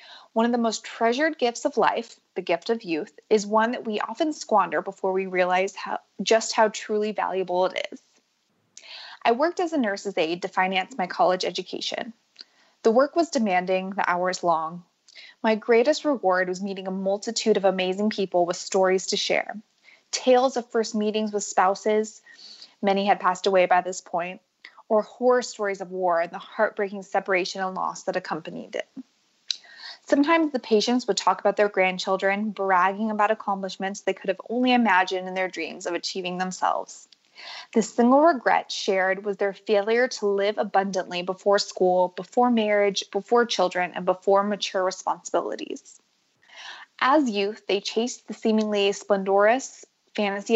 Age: 20-39